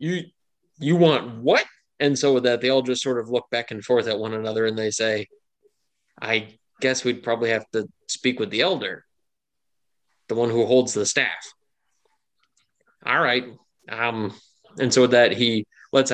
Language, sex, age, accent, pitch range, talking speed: English, male, 20-39, American, 110-130 Hz, 180 wpm